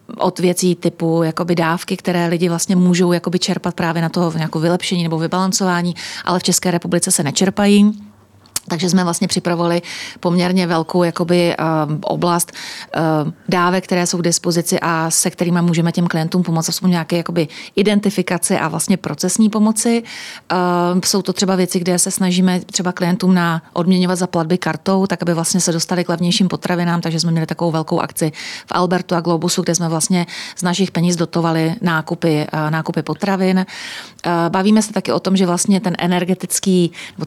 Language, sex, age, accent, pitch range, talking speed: Czech, female, 30-49, native, 170-185 Hz, 165 wpm